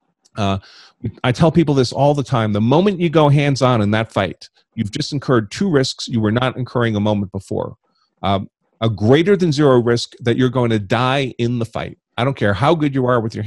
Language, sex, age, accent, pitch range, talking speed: English, male, 40-59, American, 110-145 Hz, 225 wpm